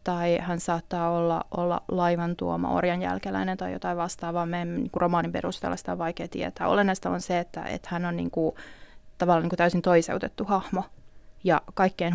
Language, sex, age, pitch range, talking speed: Finnish, female, 20-39, 170-205 Hz, 180 wpm